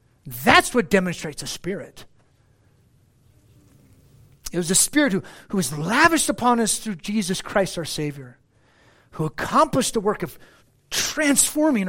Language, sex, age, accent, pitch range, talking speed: English, male, 40-59, American, 125-180 Hz, 130 wpm